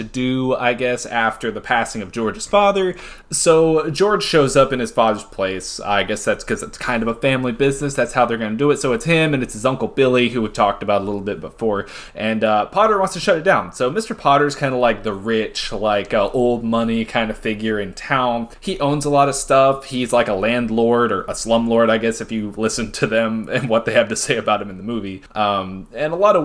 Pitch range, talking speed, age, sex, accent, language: 110-145 Hz, 255 wpm, 20-39, male, American, English